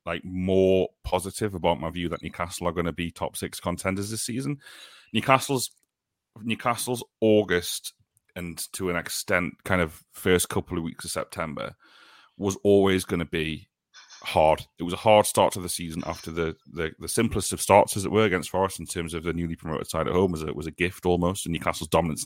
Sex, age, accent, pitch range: male, 30-49, British, 85-100 Hz